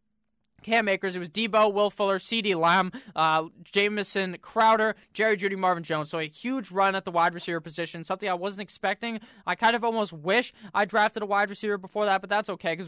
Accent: American